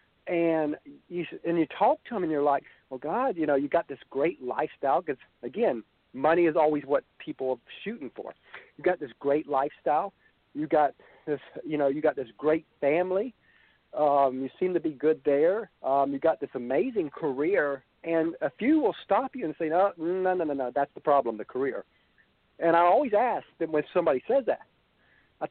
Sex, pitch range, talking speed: male, 140-185 Hz, 200 wpm